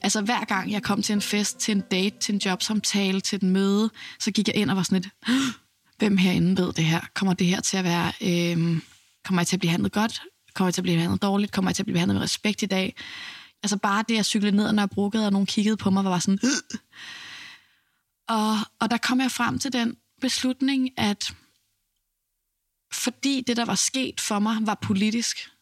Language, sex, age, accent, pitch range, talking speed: Danish, female, 20-39, native, 195-220 Hz, 225 wpm